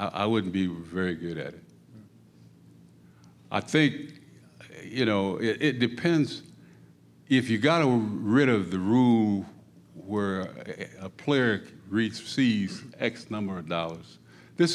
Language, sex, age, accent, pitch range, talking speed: English, male, 60-79, American, 95-130 Hz, 125 wpm